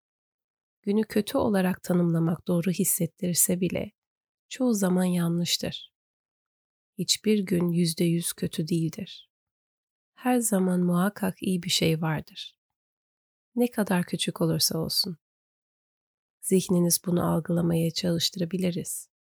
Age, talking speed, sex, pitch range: 30-49, 100 wpm, female, 165-185 Hz